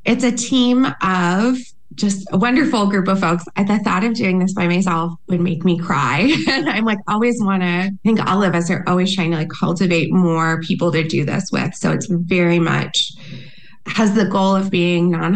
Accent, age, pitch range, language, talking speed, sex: American, 20-39, 175-200 Hz, English, 210 wpm, female